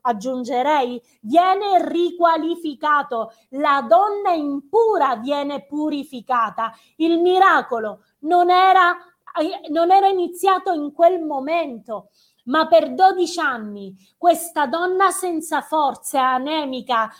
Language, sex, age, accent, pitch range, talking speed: Italian, female, 30-49, native, 280-355 Hz, 90 wpm